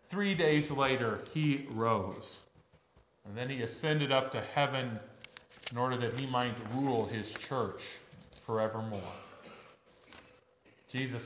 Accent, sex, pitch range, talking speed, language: American, male, 115-150 Hz, 115 wpm, English